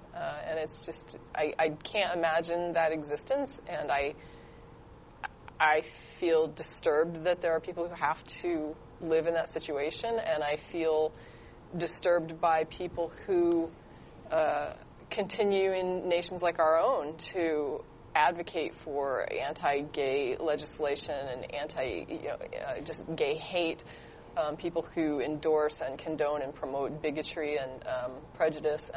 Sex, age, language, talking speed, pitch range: female, 30-49, English, 135 wpm, 150-180 Hz